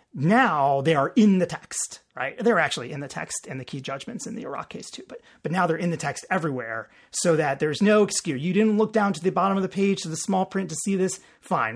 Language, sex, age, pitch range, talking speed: English, male, 30-49, 145-210 Hz, 265 wpm